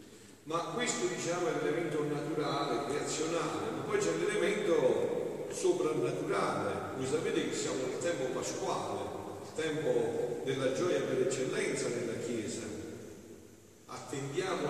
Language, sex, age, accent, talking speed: Italian, male, 50-69, native, 115 wpm